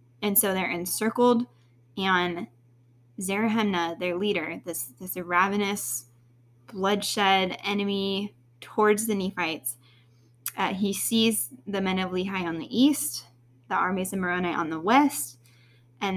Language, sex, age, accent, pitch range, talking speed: English, female, 20-39, American, 120-205 Hz, 125 wpm